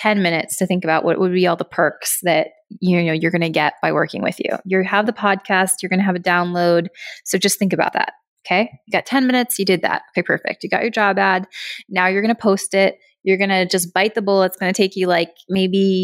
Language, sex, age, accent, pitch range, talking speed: English, female, 20-39, American, 175-205 Hz, 275 wpm